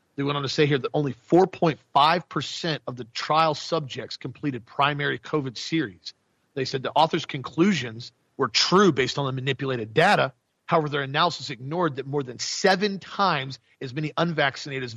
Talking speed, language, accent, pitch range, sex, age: 170 wpm, English, American, 130-165 Hz, male, 40-59